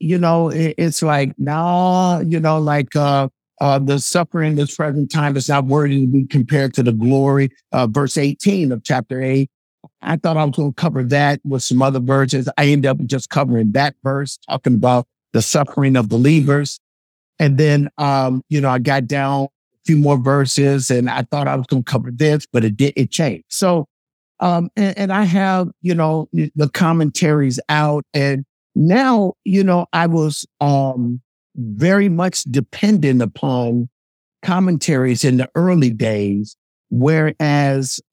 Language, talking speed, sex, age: English, 175 wpm, male, 50-69